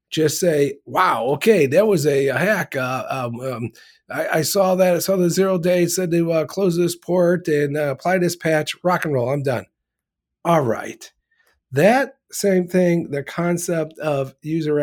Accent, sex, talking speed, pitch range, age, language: American, male, 180 wpm, 130-175 Hz, 50-69, English